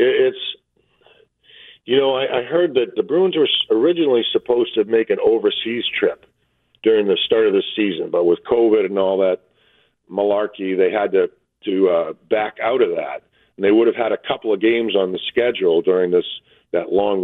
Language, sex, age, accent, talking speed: English, male, 50-69, American, 190 wpm